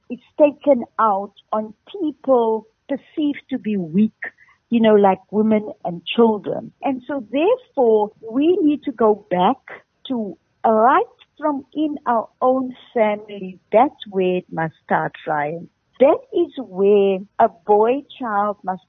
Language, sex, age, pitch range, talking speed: English, female, 60-79, 200-275 Hz, 135 wpm